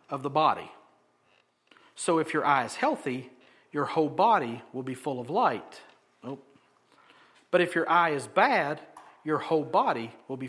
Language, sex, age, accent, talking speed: English, male, 50-69, American, 160 wpm